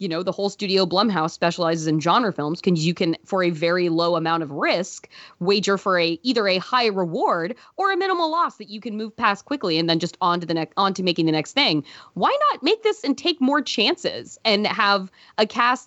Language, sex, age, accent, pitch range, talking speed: English, female, 20-39, American, 175-265 Hz, 215 wpm